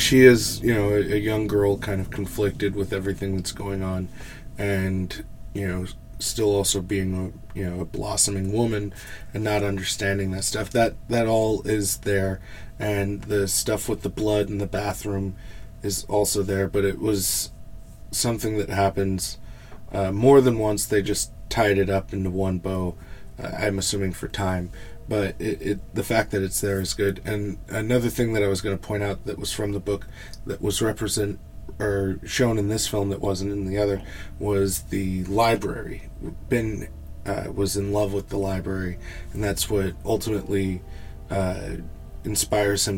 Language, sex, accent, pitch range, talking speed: English, male, American, 95-105 Hz, 175 wpm